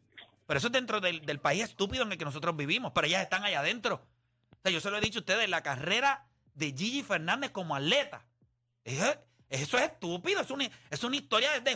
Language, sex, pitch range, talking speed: Spanish, male, 125-205 Hz, 215 wpm